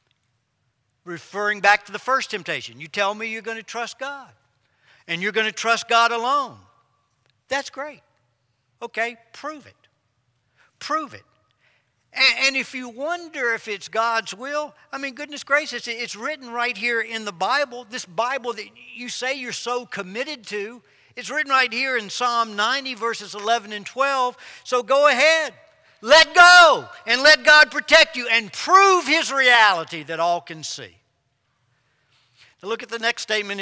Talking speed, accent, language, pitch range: 160 wpm, American, English, 175-265 Hz